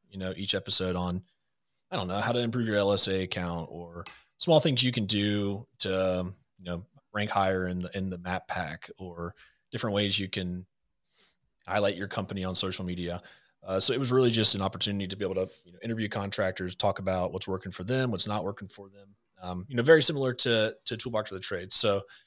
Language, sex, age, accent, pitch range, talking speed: English, male, 30-49, American, 90-110 Hz, 220 wpm